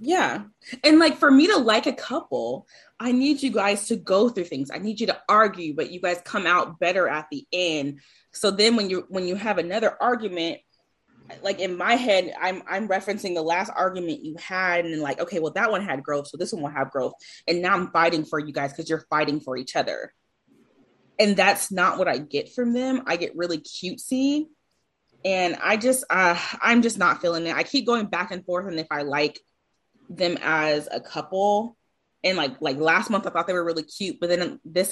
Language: English